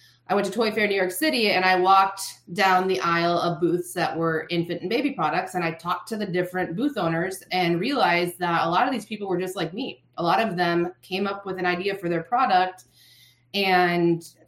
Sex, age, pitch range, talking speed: female, 20-39, 165-200 Hz, 230 wpm